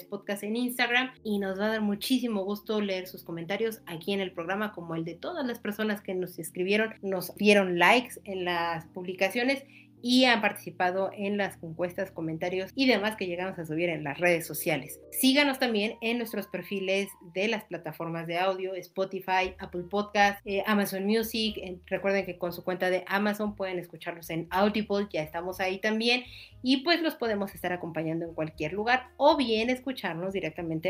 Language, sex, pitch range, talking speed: Spanish, female, 180-220 Hz, 180 wpm